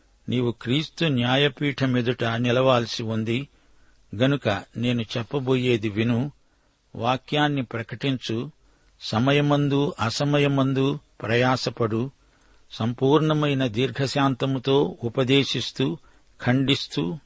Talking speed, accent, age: 65 wpm, native, 60-79